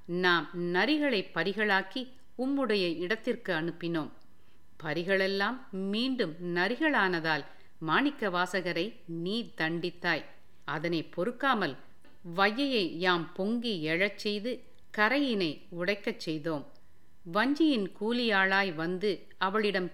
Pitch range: 160-210 Hz